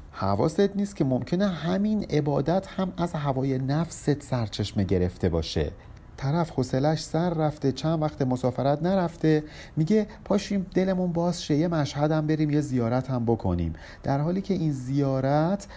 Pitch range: 110-155 Hz